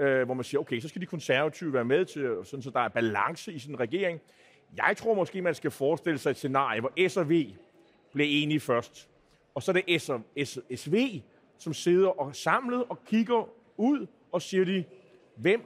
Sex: male